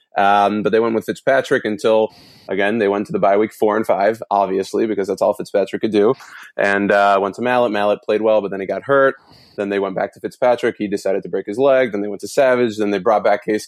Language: English